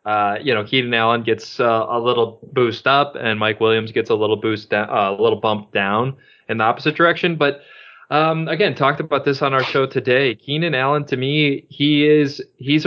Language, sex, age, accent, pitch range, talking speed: English, male, 20-39, American, 105-135 Hz, 205 wpm